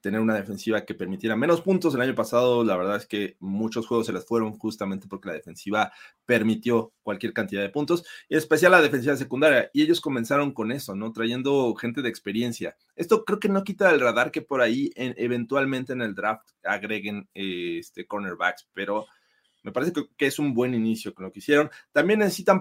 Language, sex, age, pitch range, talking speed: Spanish, male, 30-49, 110-140 Hz, 205 wpm